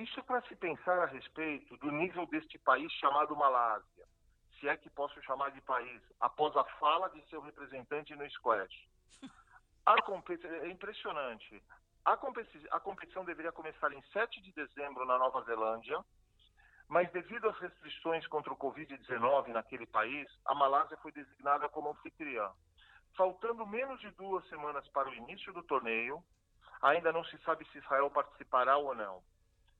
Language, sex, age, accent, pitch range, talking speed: Portuguese, male, 40-59, Brazilian, 120-165 Hz, 150 wpm